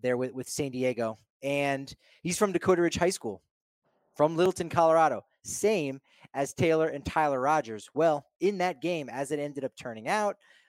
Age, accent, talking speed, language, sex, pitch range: 30-49, American, 175 wpm, English, male, 125-160 Hz